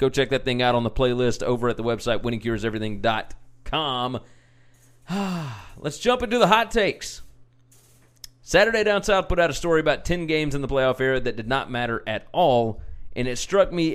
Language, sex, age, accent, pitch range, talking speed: English, male, 30-49, American, 120-150 Hz, 185 wpm